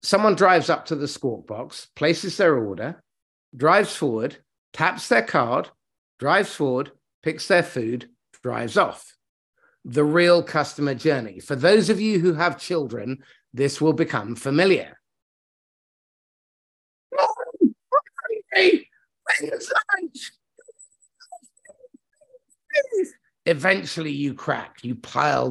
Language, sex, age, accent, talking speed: English, male, 50-69, British, 100 wpm